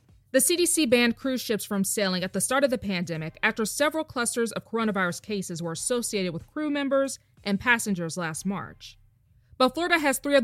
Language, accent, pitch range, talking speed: English, American, 170-255 Hz, 190 wpm